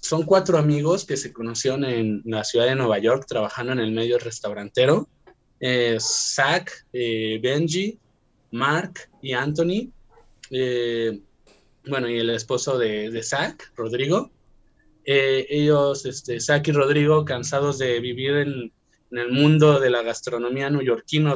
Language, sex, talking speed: Spanish, male, 140 wpm